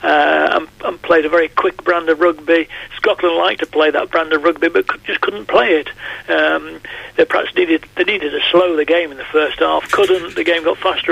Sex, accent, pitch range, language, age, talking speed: male, British, 160-200 Hz, English, 60-79, 220 wpm